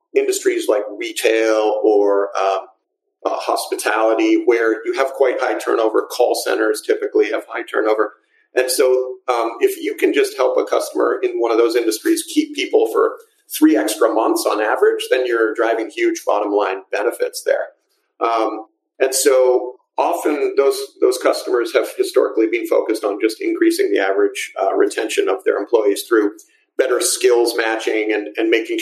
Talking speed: 160 wpm